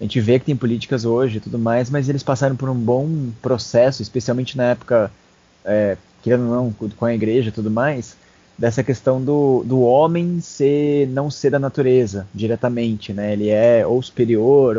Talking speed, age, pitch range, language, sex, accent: 185 wpm, 20-39, 115-145 Hz, Portuguese, male, Brazilian